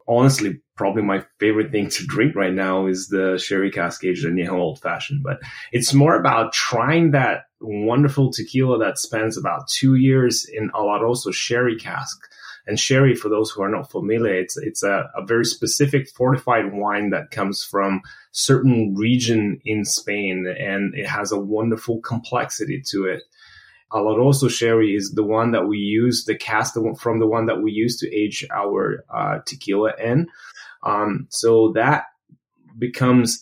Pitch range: 105-125 Hz